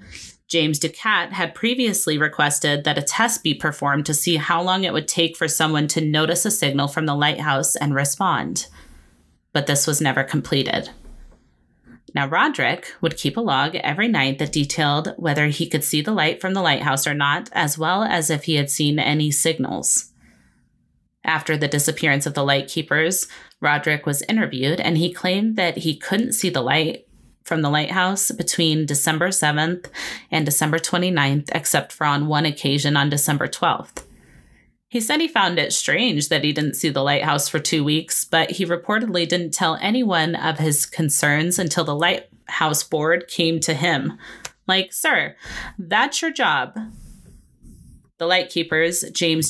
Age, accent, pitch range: 30-49, American, 145-175 Hz